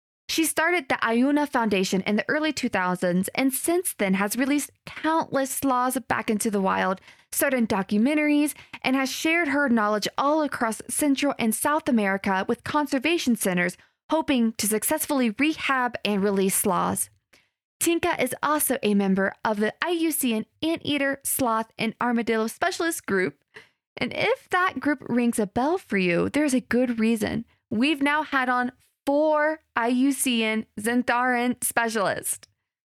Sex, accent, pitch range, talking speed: female, American, 220-295 Hz, 140 wpm